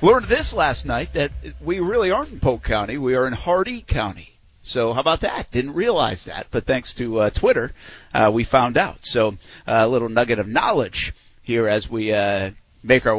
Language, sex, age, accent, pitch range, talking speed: English, male, 50-69, American, 105-140 Hz, 205 wpm